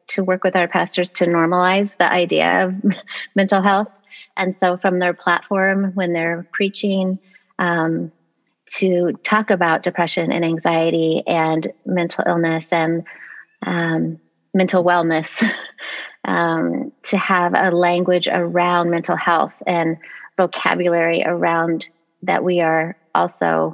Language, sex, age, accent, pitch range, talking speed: English, female, 30-49, American, 170-190 Hz, 125 wpm